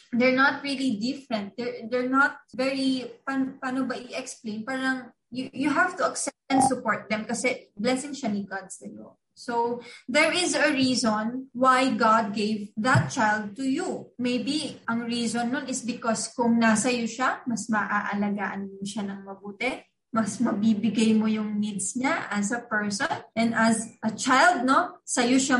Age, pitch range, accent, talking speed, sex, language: 20-39, 220-265 Hz, native, 160 wpm, female, Filipino